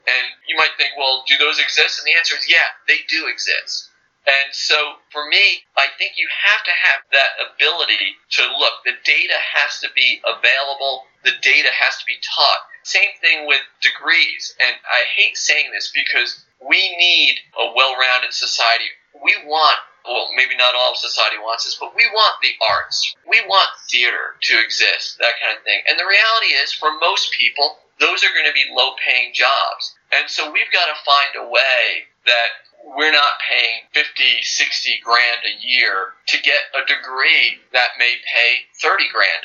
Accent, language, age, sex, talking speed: American, English, 40-59, male, 185 wpm